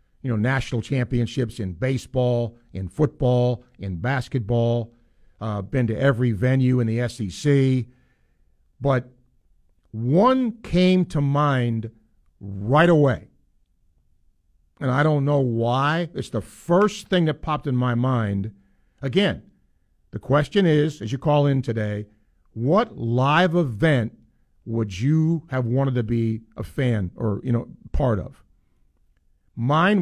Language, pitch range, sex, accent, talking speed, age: English, 105-140 Hz, male, American, 130 wpm, 50-69